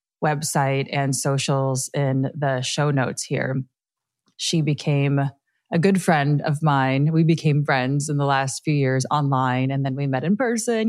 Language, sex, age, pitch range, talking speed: English, female, 30-49, 130-165 Hz, 165 wpm